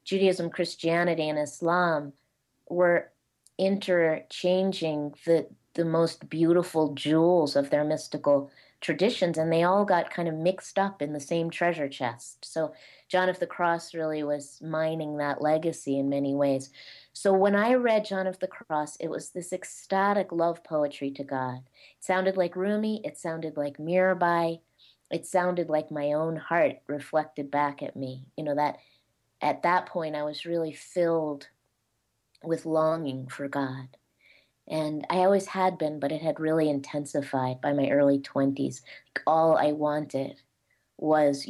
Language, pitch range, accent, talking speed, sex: English, 145-180 Hz, American, 155 wpm, female